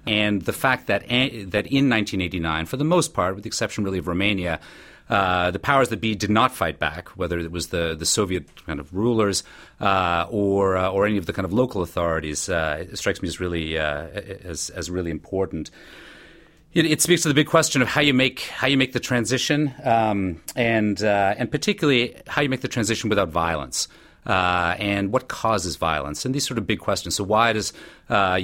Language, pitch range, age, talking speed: English, 90-115 Hz, 40-59, 215 wpm